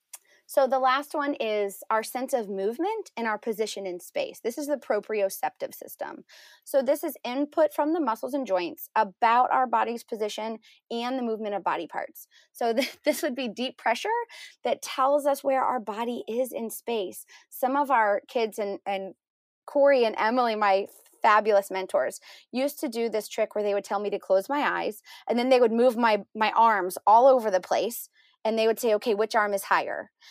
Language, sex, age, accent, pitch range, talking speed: English, female, 20-39, American, 215-275 Hz, 200 wpm